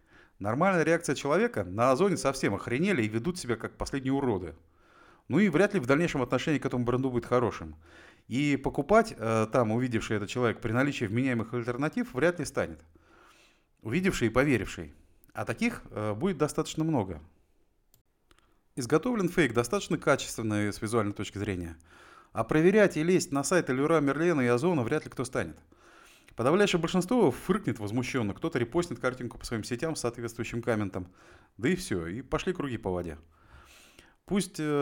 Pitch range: 110-155 Hz